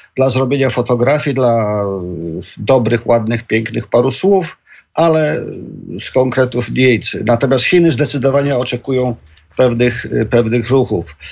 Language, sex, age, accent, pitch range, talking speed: Polish, male, 50-69, native, 115-135 Hz, 105 wpm